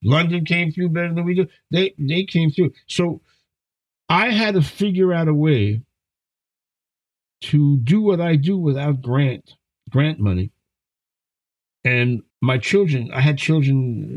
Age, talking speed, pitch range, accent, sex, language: 50-69, 145 wpm, 120-150 Hz, American, male, English